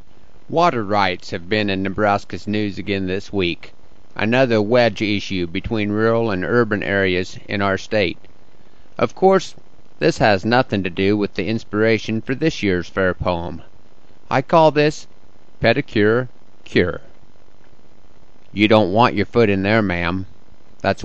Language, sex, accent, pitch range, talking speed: English, male, American, 100-125 Hz, 145 wpm